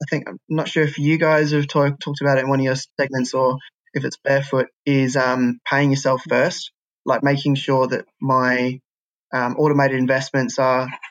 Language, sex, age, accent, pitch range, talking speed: English, male, 20-39, Australian, 130-140 Hz, 190 wpm